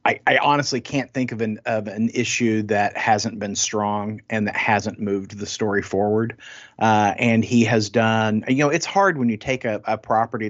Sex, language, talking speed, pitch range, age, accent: male, English, 205 wpm, 105-130 Hz, 40-59, American